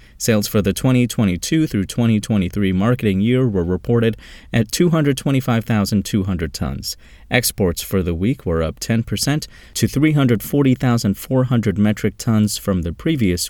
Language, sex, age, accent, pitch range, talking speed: English, male, 30-49, American, 90-125 Hz, 120 wpm